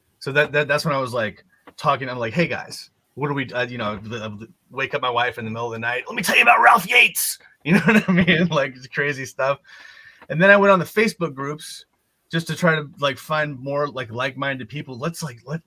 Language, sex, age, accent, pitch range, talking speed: English, male, 30-49, American, 120-165 Hz, 260 wpm